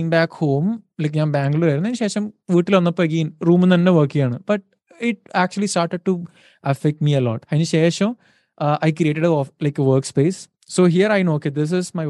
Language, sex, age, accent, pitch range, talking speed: Malayalam, male, 20-39, native, 145-180 Hz, 200 wpm